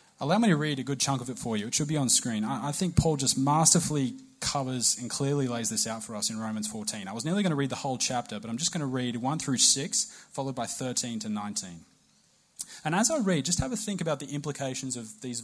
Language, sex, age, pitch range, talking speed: English, male, 30-49, 115-175 Hz, 265 wpm